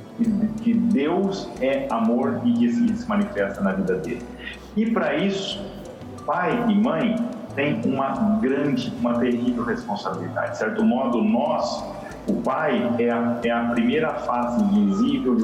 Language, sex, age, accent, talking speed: Portuguese, male, 40-59, Brazilian, 145 wpm